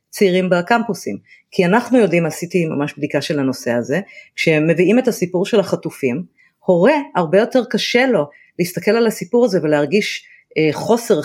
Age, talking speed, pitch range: 40-59, 150 wpm, 165-220 Hz